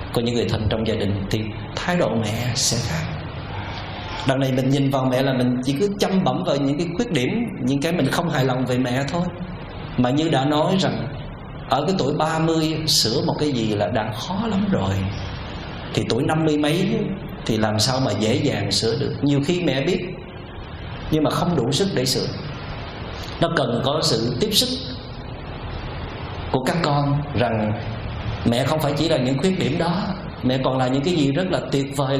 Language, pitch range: Vietnamese, 115-150 Hz